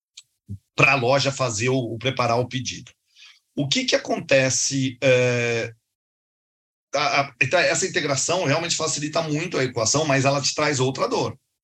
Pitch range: 120-145 Hz